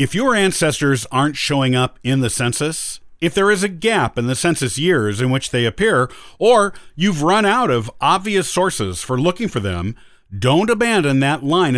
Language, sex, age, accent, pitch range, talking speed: English, male, 50-69, American, 115-180 Hz, 190 wpm